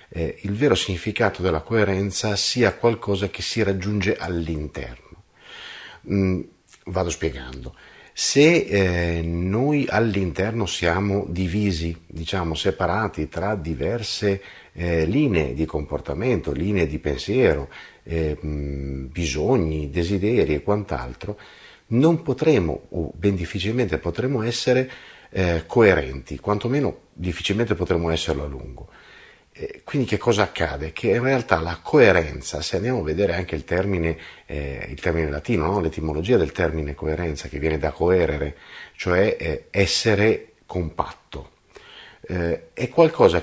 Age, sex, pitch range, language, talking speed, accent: 50-69, male, 80-105 Hz, Italian, 120 wpm, native